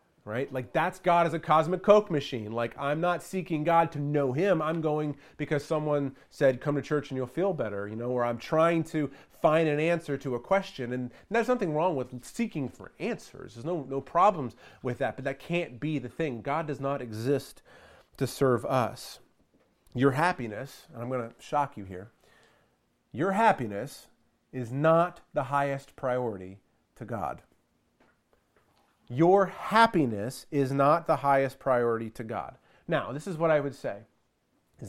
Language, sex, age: English, male, 30-49